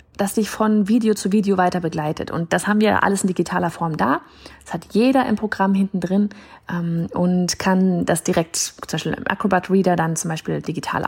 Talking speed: 200 wpm